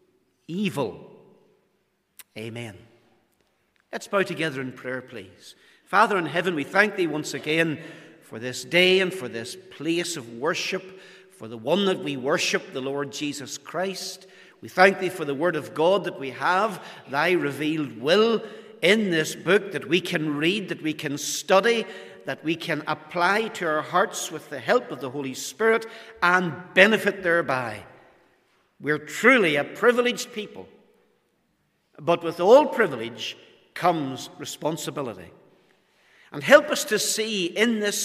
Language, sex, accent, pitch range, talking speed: English, male, Irish, 135-190 Hz, 150 wpm